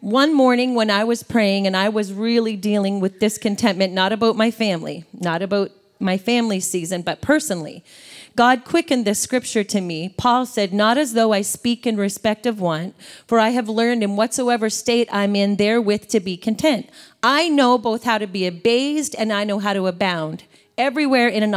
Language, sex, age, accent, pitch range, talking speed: English, female, 30-49, American, 195-240 Hz, 195 wpm